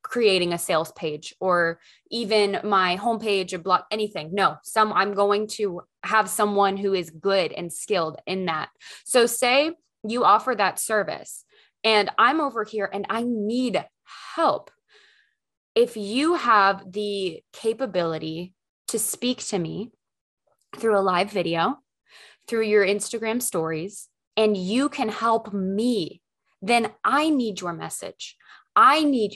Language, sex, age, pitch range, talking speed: English, female, 20-39, 195-240 Hz, 140 wpm